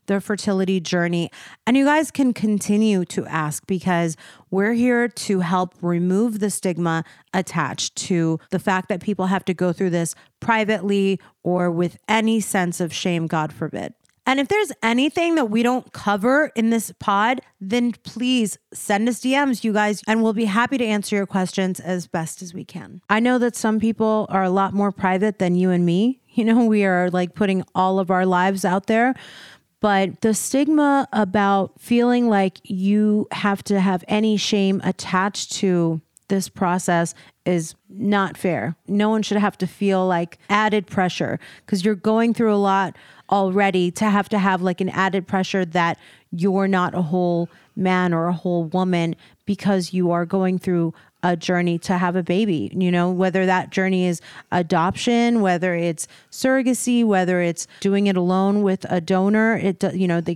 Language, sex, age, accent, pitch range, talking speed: English, female, 30-49, American, 180-210 Hz, 180 wpm